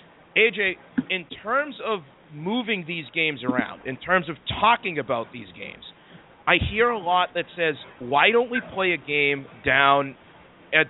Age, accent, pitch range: 40-59, American, 140-185 Hz